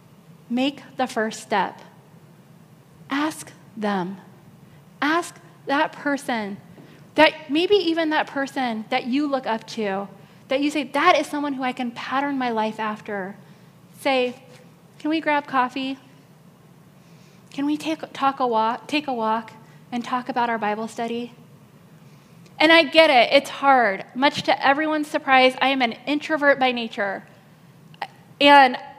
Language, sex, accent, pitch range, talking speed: English, female, American, 200-300 Hz, 145 wpm